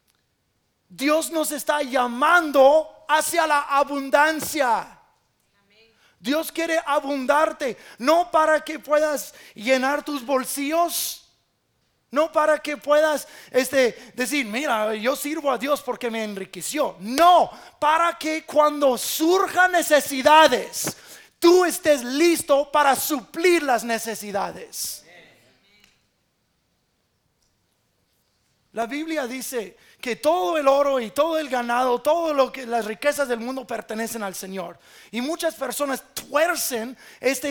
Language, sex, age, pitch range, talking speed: English, male, 30-49, 215-300 Hz, 105 wpm